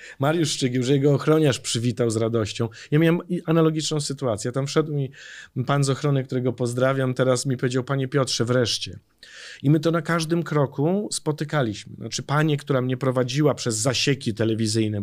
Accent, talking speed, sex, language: native, 165 wpm, male, Polish